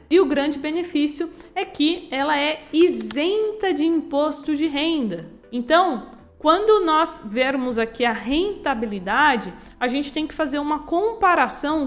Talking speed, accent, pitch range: 135 wpm, Brazilian, 260-330 Hz